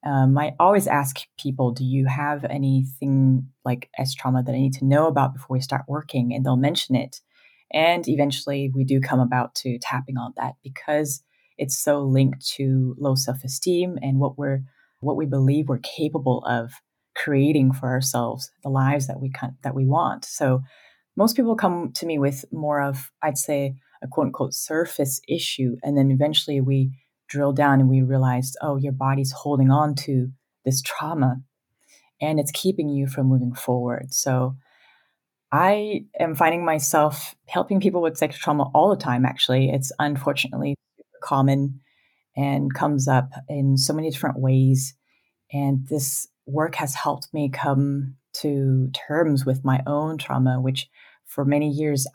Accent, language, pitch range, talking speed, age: American, English, 130-145 Hz, 165 wpm, 30-49